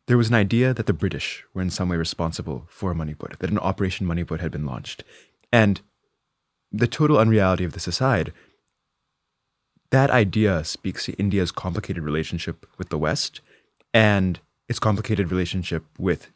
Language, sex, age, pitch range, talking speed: English, male, 20-39, 85-110 Hz, 160 wpm